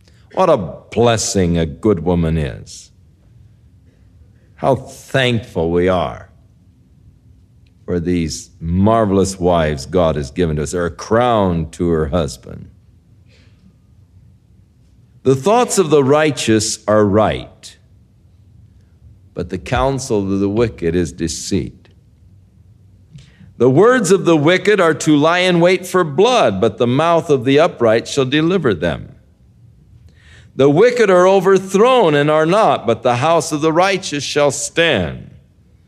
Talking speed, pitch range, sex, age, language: 130 wpm, 95-140 Hz, male, 60-79, English